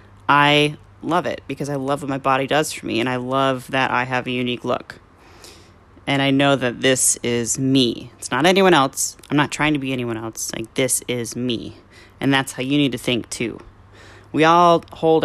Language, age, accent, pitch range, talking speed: English, 30-49, American, 110-145 Hz, 215 wpm